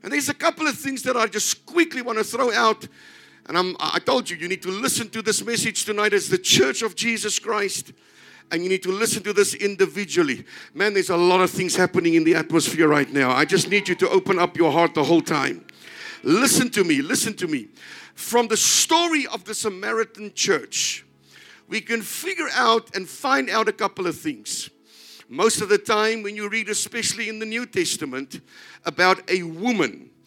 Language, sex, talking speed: English, male, 205 wpm